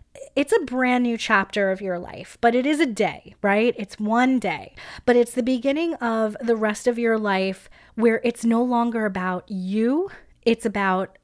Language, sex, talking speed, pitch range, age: English, female, 185 wpm, 205-255 Hz, 20-39